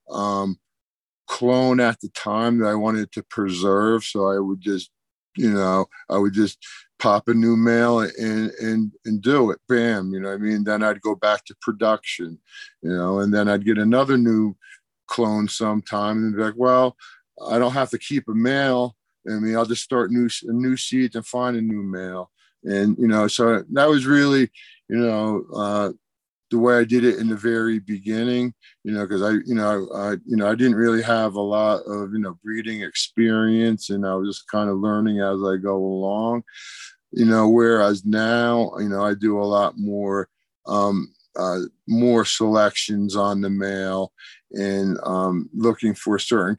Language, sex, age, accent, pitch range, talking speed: English, male, 50-69, American, 100-115 Hz, 190 wpm